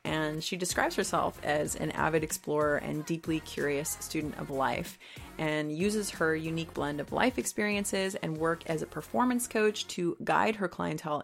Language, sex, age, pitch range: English, female, 30-49, 155-185 Hz